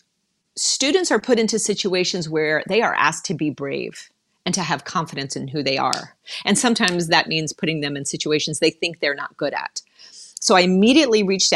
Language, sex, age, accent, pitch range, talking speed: English, female, 40-59, American, 155-205 Hz, 195 wpm